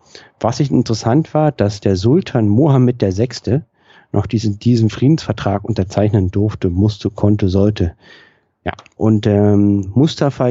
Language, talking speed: German, 120 wpm